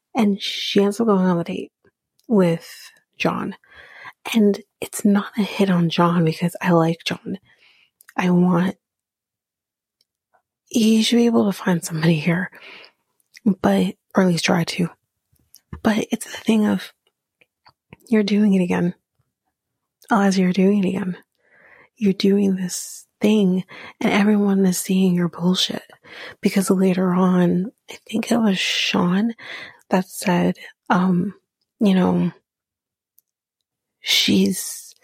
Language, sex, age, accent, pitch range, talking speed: English, female, 30-49, American, 175-210 Hz, 130 wpm